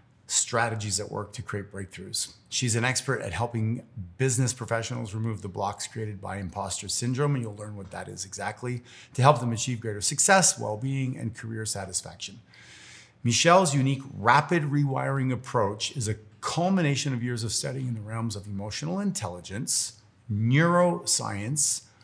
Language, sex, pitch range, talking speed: English, male, 105-135 Hz, 155 wpm